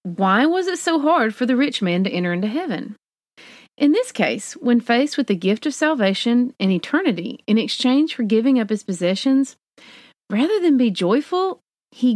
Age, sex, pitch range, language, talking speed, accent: 40-59, female, 185-265 Hz, English, 185 wpm, American